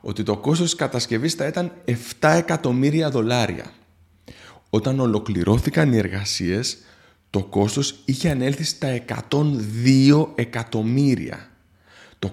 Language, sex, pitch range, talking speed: Greek, male, 120-160 Hz, 105 wpm